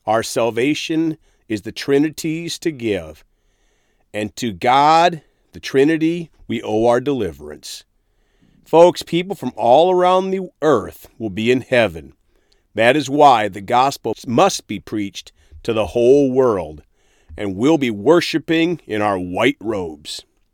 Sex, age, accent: male, 40-59, American